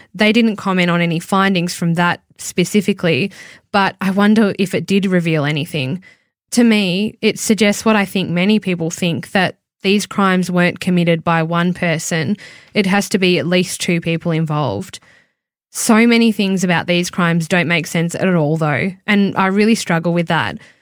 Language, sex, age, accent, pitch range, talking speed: English, female, 10-29, Australian, 170-200 Hz, 180 wpm